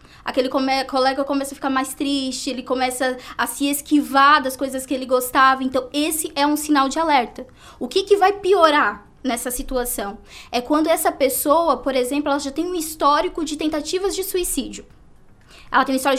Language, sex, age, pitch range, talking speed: Portuguese, female, 10-29, 260-300 Hz, 185 wpm